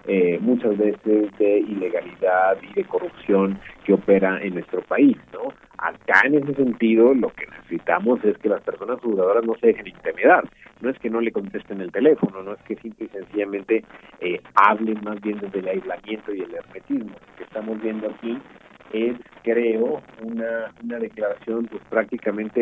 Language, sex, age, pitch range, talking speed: Spanish, male, 40-59, 105-155 Hz, 170 wpm